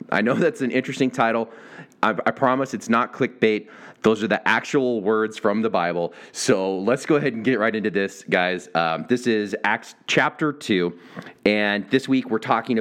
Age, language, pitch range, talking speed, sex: 30-49, English, 100-130 Hz, 190 wpm, male